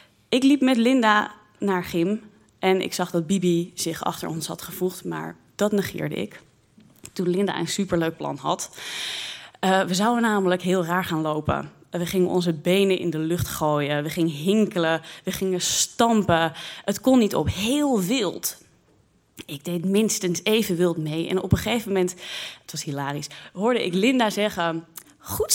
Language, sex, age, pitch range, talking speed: Dutch, female, 20-39, 170-210 Hz, 170 wpm